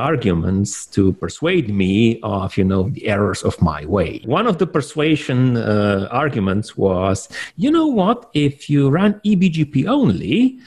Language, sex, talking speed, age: English, male, 150 wpm, 40-59